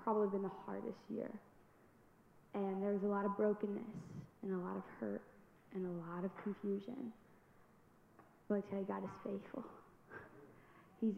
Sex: female